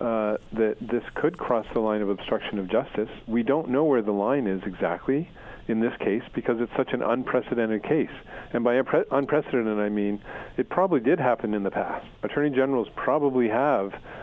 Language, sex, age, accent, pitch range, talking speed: English, male, 50-69, American, 105-130 Hz, 185 wpm